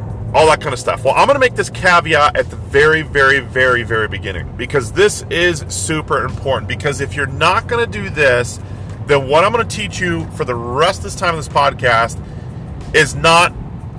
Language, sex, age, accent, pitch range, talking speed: English, male, 40-59, American, 110-155 Hz, 215 wpm